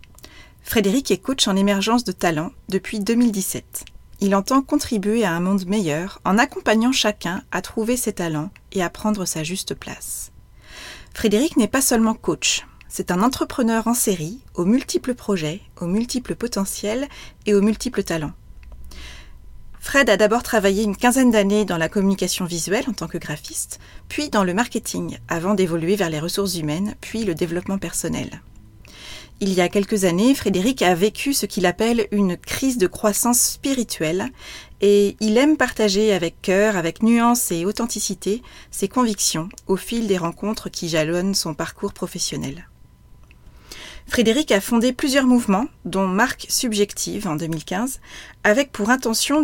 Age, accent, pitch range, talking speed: 30-49, French, 180-235 Hz, 155 wpm